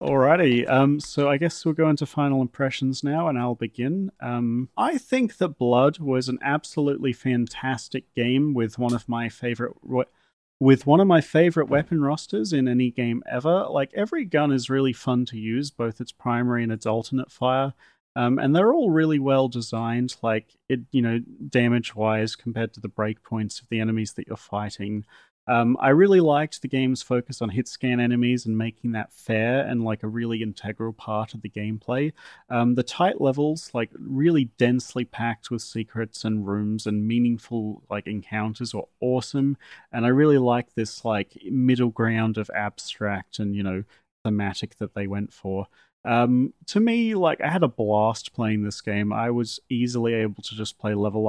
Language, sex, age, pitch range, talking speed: English, male, 30-49, 110-135 Hz, 180 wpm